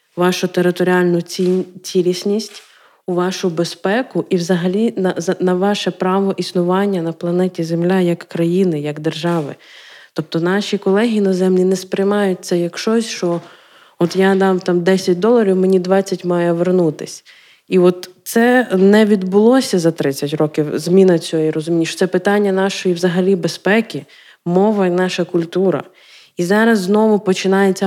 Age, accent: 20-39, native